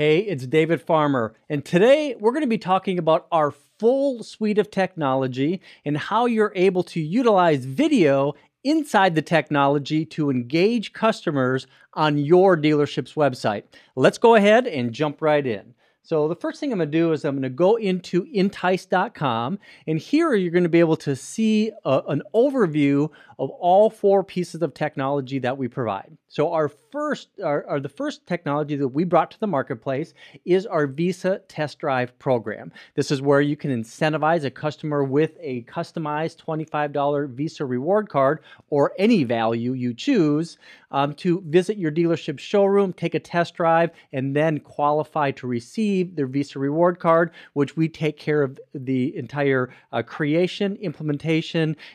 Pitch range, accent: 140-185 Hz, American